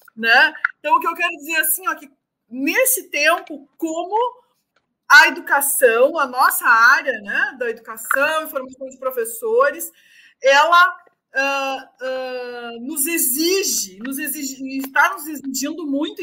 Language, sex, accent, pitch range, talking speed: Portuguese, female, Brazilian, 260-335 Hz, 135 wpm